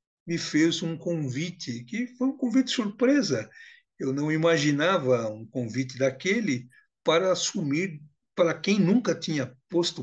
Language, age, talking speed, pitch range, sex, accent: Portuguese, 60-79, 130 wpm, 130-200 Hz, male, Brazilian